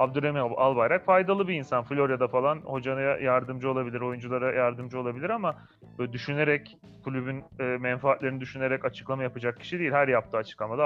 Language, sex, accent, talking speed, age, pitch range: Turkish, male, native, 145 wpm, 30-49, 125-160 Hz